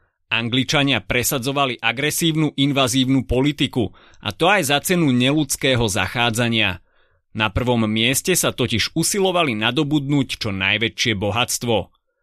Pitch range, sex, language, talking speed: 115-145 Hz, male, Slovak, 110 wpm